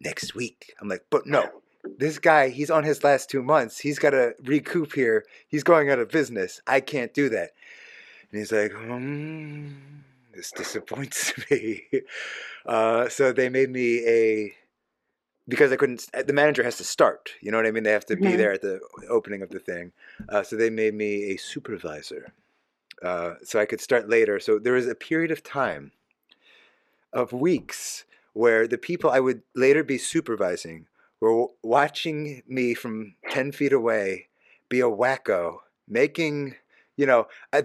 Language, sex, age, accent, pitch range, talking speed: English, male, 30-49, American, 110-160 Hz, 170 wpm